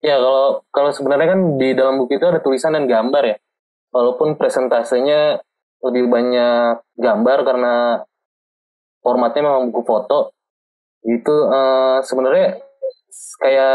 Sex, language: male, Indonesian